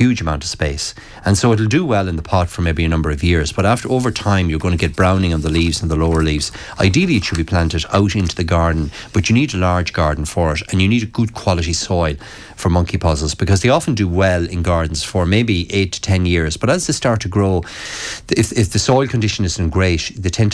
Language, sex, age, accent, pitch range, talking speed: English, male, 30-49, Irish, 85-105 Hz, 260 wpm